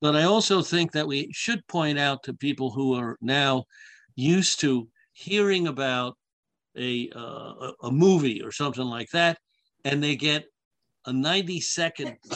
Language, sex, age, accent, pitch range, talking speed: English, male, 60-79, American, 130-155 Hz, 155 wpm